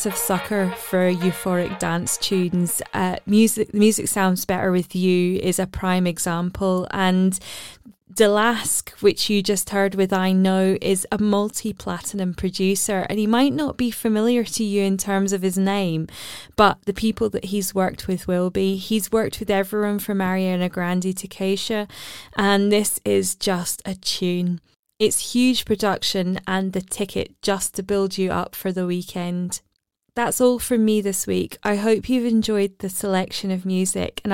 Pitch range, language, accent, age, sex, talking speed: 185-215 Hz, English, British, 20-39, female, 170 wpm